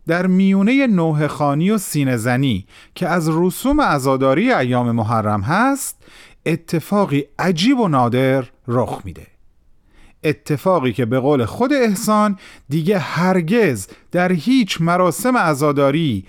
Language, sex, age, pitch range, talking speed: Persian, male, 40-59, 125-185 Hz, 115 wpm